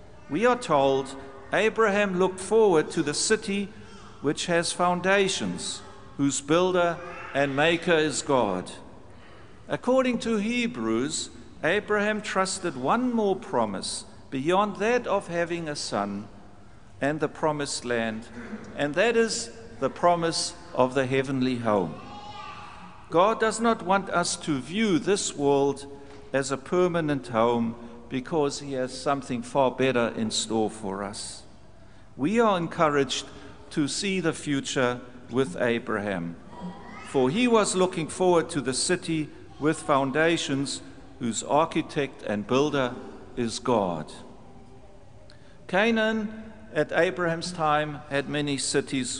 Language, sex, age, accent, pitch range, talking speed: English, male, 60-79, German, 120-175 Hz, 120 wpm